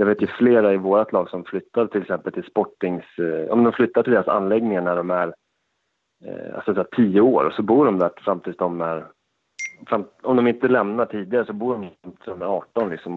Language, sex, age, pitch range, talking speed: Swedish, male, 30-49, 100-125 Hz, 225 wpm